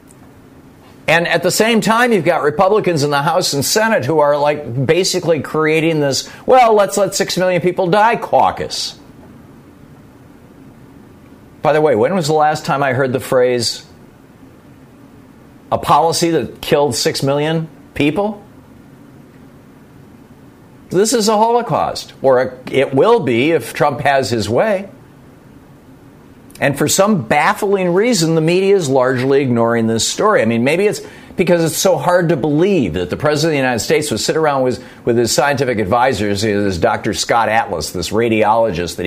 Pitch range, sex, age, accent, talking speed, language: 120-190 Hz, male, 50-69, American, 155 wpm, English